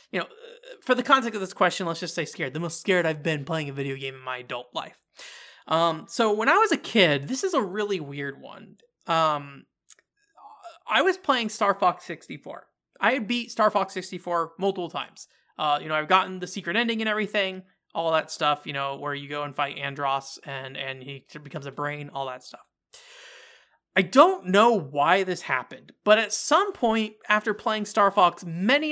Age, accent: 30-49, American